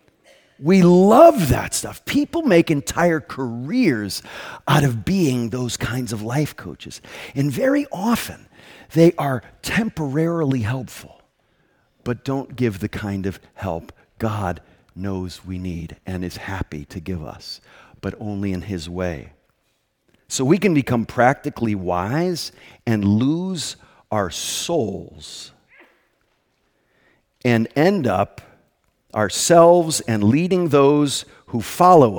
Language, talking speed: English, 120 wpm